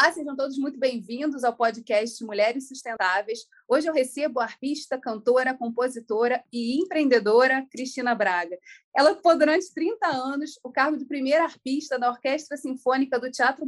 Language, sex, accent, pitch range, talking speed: Portuguese, female, Brazilian, 230-280 Hz, 155 wpm